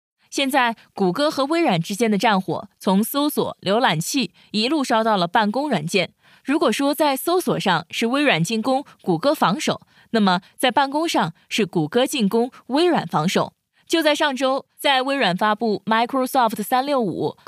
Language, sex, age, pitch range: Chinese, female, 20-39, 195-275 Hz